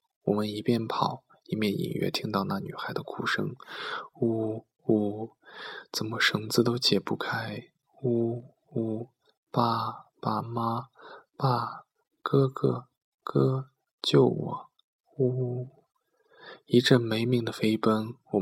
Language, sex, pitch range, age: Chinese, male, 105-120 Hz, 20-39